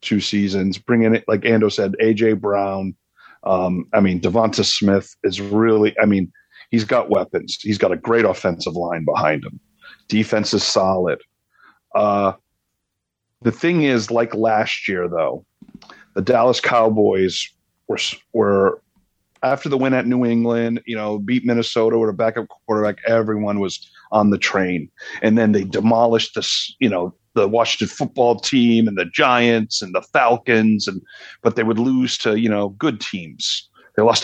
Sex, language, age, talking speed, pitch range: male, English, 40-59, 165 wpm, 100-120 Hz